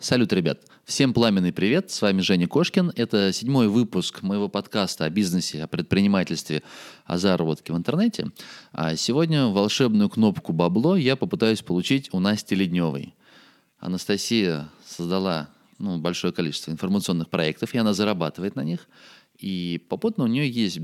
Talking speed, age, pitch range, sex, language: 145 wpm, 20-39, 85-110 Hz, male, Russian